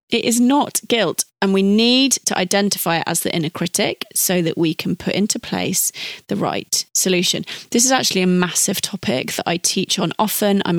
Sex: female